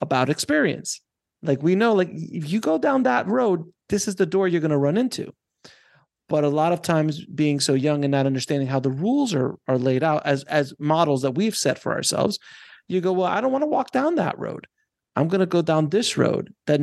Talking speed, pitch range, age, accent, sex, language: 235 wpm, 150-205 Hz, 30-49, American, male, English